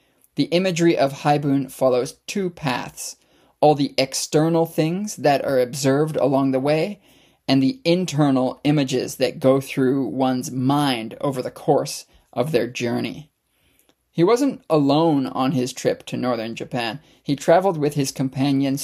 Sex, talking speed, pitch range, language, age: male, 145 wpm, 130-160 Hz, English, 20-39